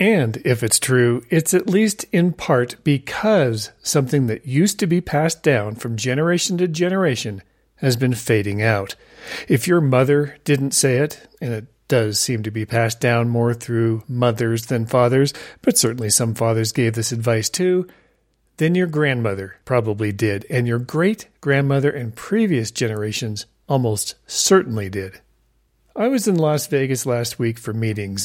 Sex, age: male, 40-59